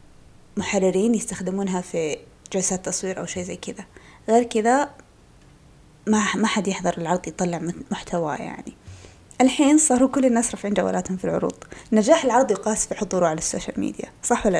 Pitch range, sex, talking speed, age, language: 180-215 Hz, female, 150 wpm, 20-39, Arabic